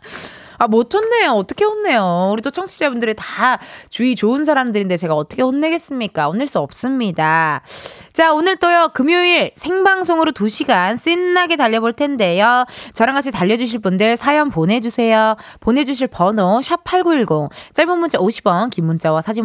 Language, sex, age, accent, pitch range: Korean, female, 20-39, native, 210-345 Hz